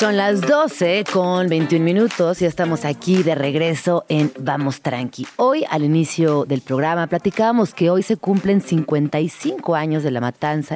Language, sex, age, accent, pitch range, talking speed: Spanish, female, 30-49, Mexican, 145-180 Hz, 160 wpm